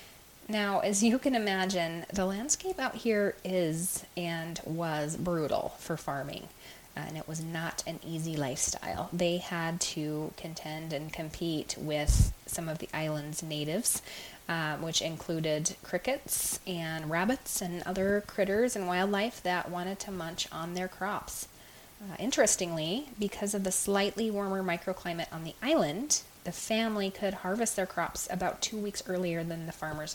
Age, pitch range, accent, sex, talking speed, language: 20-39, 160-195 Hz, American, female, 150 wpm, English